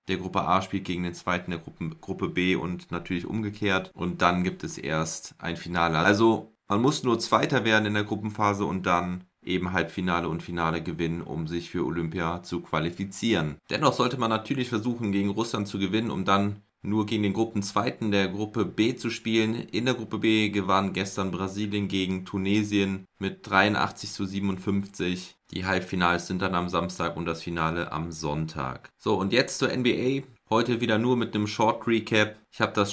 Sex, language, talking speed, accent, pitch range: male, German, 190 wpm, German, 95-110 Hz